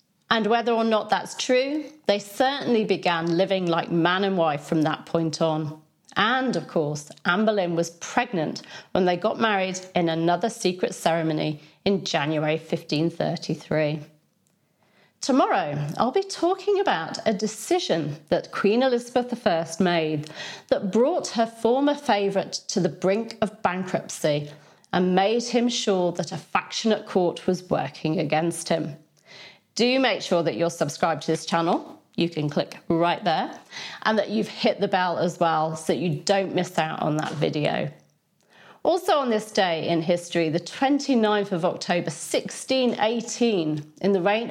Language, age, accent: English, 40-59, British